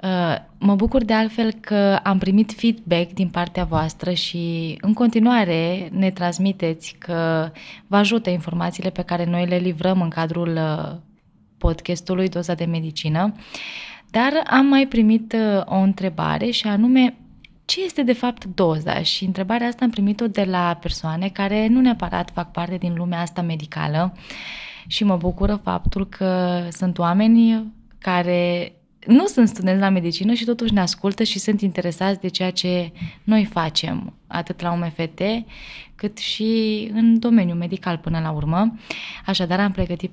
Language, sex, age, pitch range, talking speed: Romanian, female, 20-39, 175-215 Hz, 150 wpm